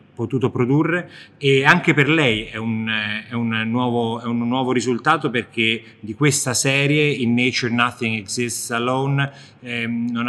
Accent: native